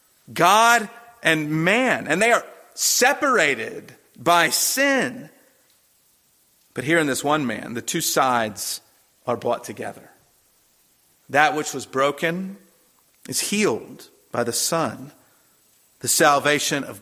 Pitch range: 125-160 Hz